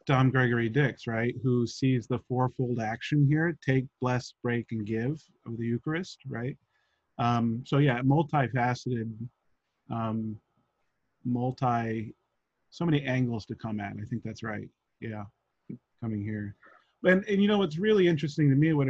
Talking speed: 150 wpm